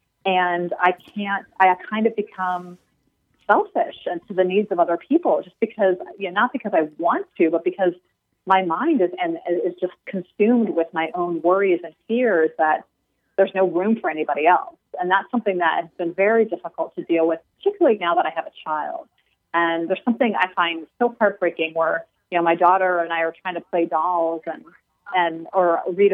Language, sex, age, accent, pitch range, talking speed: English, female, 30-49, American, 170-200 Hz, 195 wpm